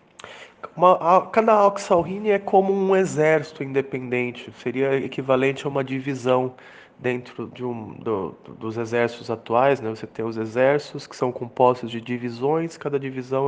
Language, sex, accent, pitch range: English, male, Brazilian, 120-150 Hz